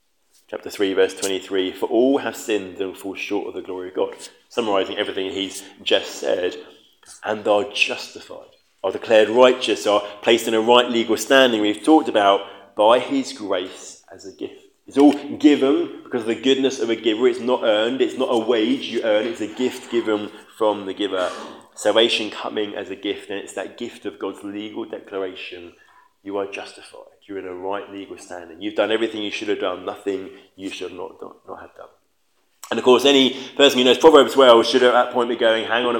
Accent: British